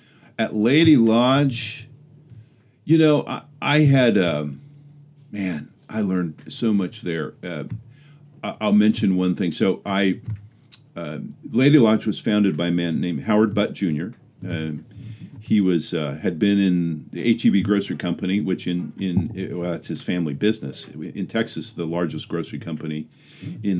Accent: American